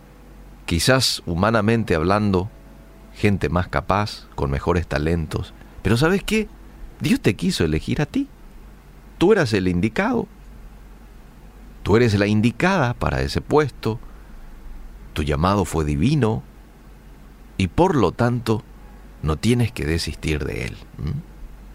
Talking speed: 120 wpm